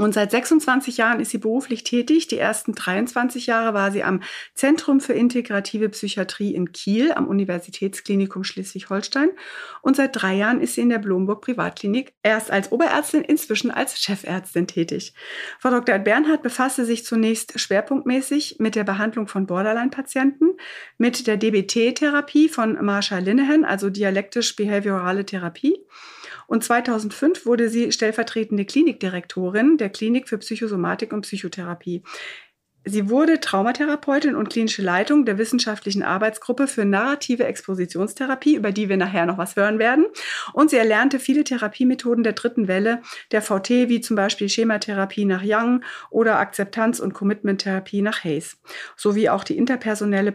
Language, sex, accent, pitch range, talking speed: German, female, German, 200-255 Hz, 140 wpm